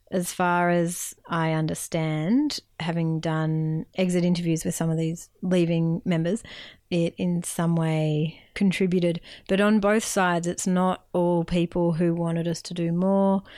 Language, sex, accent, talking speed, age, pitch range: English, female, Australian, 150 wpm, 30-49, 170-190 Hz